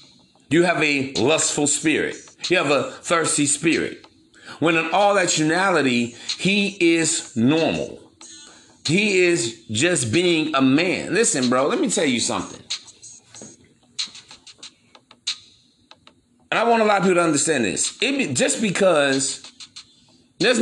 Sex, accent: male, American